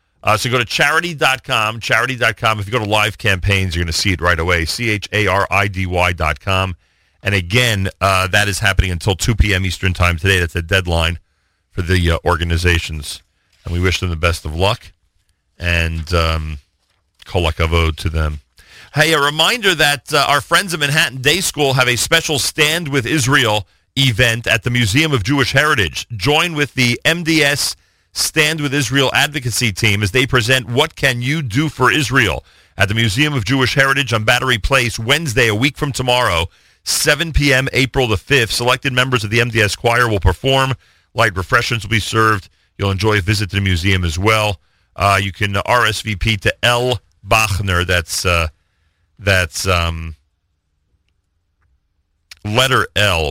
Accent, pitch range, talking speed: American, 90-125 Hz, 165 wpm